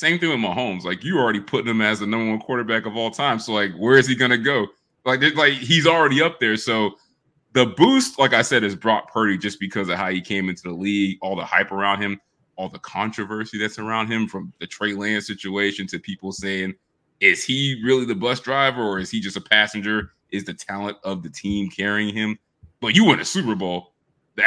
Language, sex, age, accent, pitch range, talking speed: English, male, 20-39, American, 105-130 Hz, 235 wpm